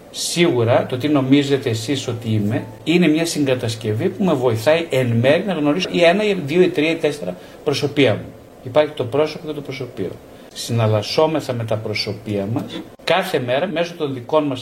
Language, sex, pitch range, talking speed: Greek, male, 115-155 Hz, 180 wpm